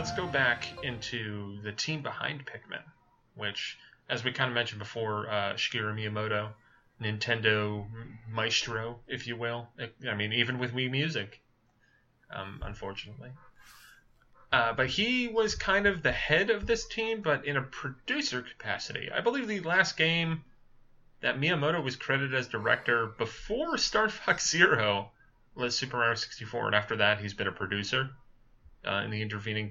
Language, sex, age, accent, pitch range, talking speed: English, male, 30-49, American, 110-150 Hz, 155 wpm